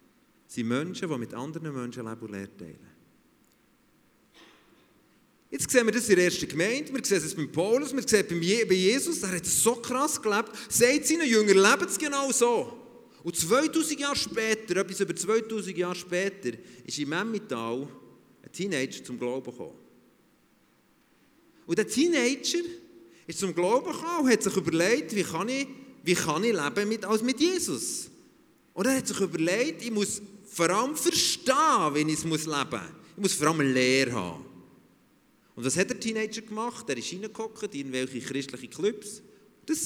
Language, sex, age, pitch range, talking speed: German, male, 40-59, 155-235 Hz, 170 wpm